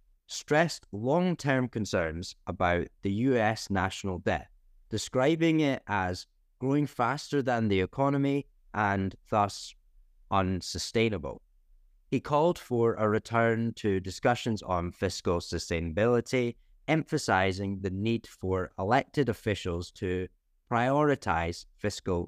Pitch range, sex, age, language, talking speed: 90-135 Hz, male, 30-49, English, 100 wpm